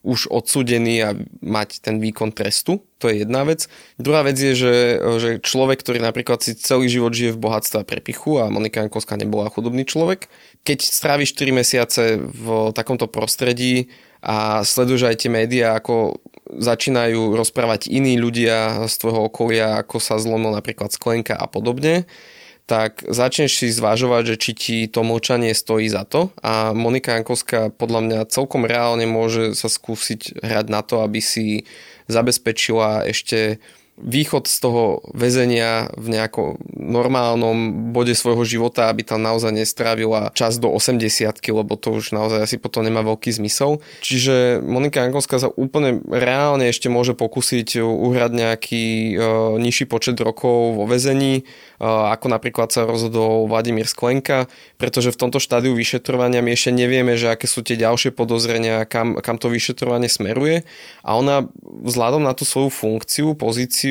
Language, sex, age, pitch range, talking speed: Slovak, male, 20-39, 110-125 Hz, 155 wpm